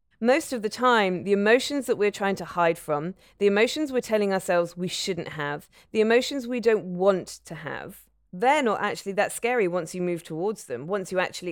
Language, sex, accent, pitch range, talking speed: English, female, British, 175-215 Hz, 210 wpm